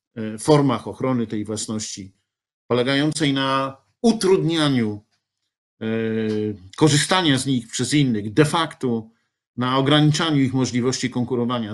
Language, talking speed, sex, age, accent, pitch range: Polish, 95 wpm, male, 50-69, native, 120-160 Hz